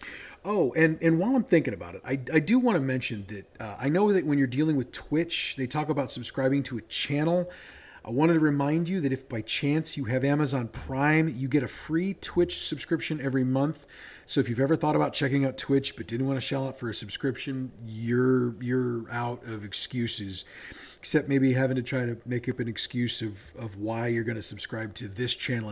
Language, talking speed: English, 220 wpm